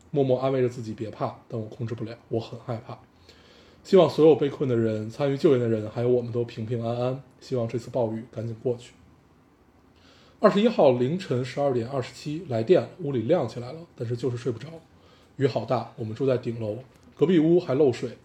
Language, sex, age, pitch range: Chinese, male, 20-39, 115-140 Hz